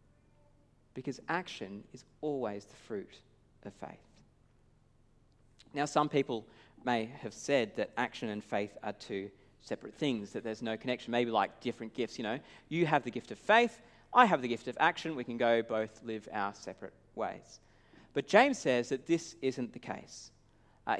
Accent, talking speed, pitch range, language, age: Australian, 175 wpm, 110-150 Hz, English, 40-59